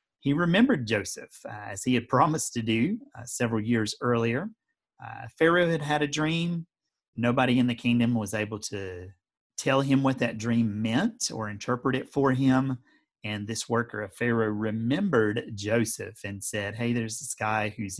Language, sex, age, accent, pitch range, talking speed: English, male, 30-49, American, 105-130 Hz, 175 wpm